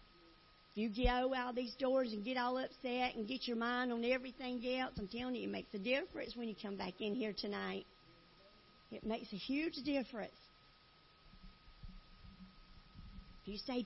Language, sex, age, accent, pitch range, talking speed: English, female, 50-69, American, 185-250 Hz, 170 wpm